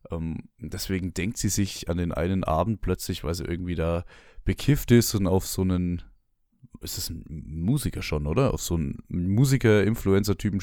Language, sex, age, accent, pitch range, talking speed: German, male, 20-39, German, 90-110 Hz, 165 wpm